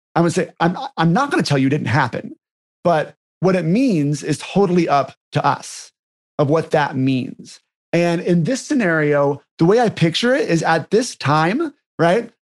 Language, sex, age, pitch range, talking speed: English, male, 30-49, 155-215 Hz, 190 wpm